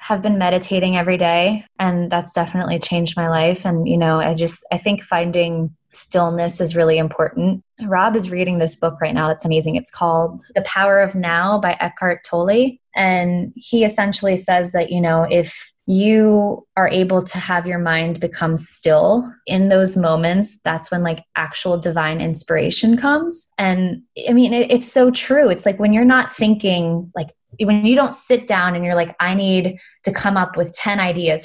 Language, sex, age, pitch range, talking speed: English, female, 20-39, 170-210 Hz, 185 wpm